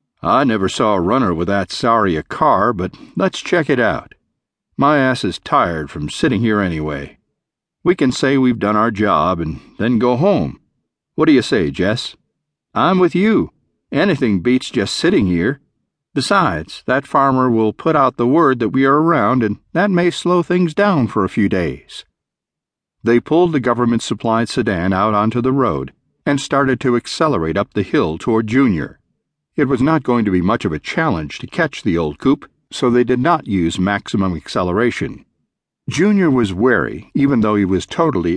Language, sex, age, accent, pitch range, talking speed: English, male, 50-69, American, 100-140 Hz, 185 wpm